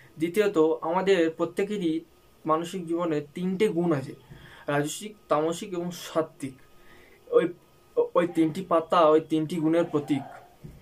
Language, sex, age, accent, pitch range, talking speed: Bengali, male, 20-39, native, 155-175 Hz, 100 wpm